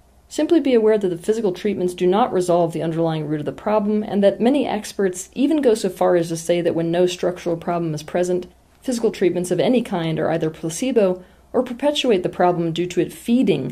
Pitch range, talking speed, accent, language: 165-220 Hz, 220 wpm, American, English